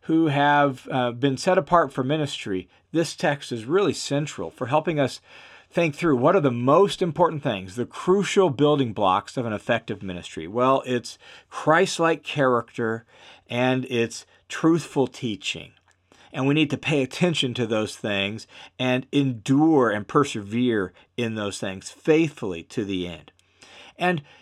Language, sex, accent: English, male, American